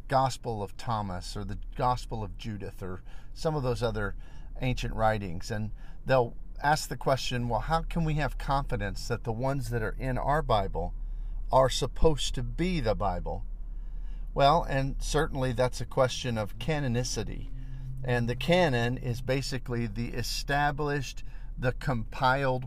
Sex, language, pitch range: male, English, 115-140 Hz